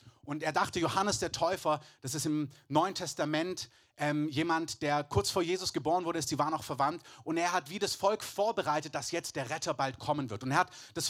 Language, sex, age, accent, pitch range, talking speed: German, male, 30-49, German, 145-195 Hz, 225 wpm